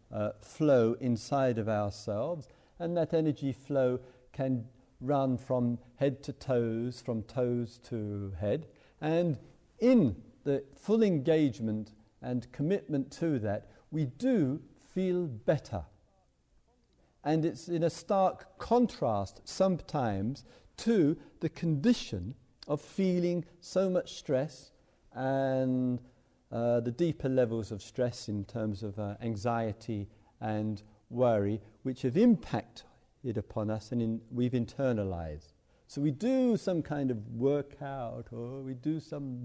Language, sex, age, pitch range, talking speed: English, male, 50-69, 110-150 Hz, 120 wpm